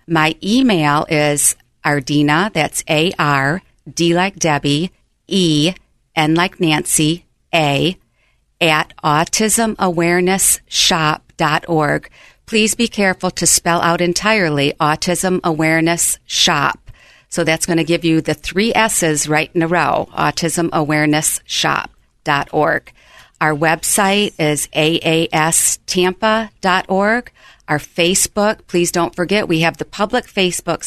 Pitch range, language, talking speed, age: 155-185 Hz, English, 115 wpm, 50-69